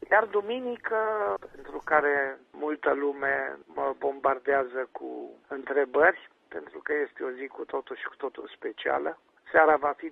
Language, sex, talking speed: Romanian, male, 140 wpm